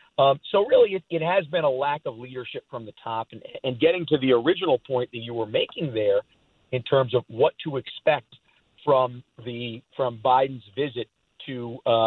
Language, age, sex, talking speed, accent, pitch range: English, 50-69, male, 195 wpm, American, 130-165 Hz